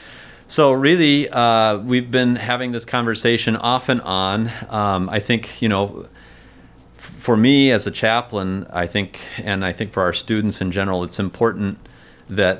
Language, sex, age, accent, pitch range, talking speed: English, male, 40-59, American, 90-110 Hz, 165 wpm